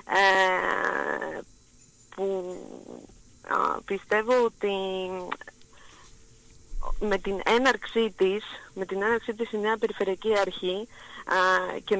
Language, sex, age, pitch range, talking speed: Greek, female, 30-49, 190-235 Hz, 90 wpm